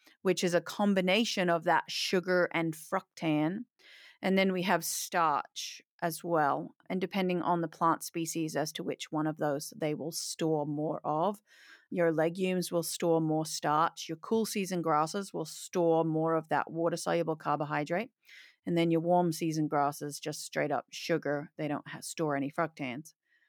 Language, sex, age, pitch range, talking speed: English, female, 40-59, 155-190 Hz, 165 wpm